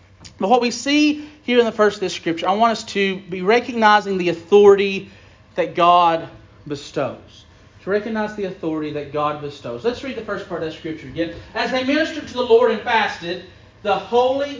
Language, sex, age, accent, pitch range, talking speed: English, male, 40-59, American, 145-200 Hz, 195 wpm